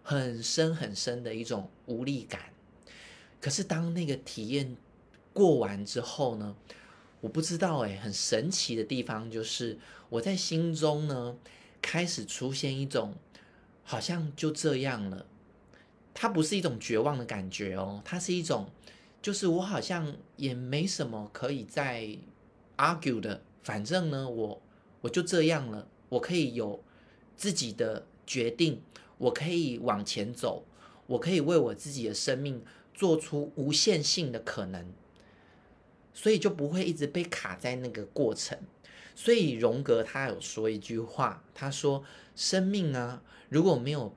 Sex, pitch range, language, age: male, 110-160 Hz, Chinese, 30-49